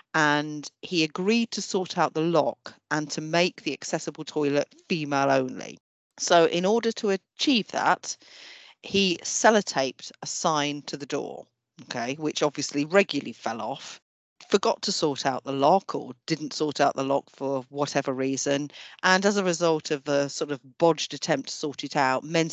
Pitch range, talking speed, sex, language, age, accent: 140-190 Hz, 175 wpm, female, English, 40-59, British